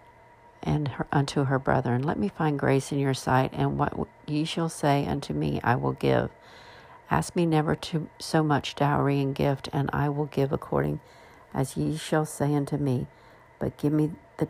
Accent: American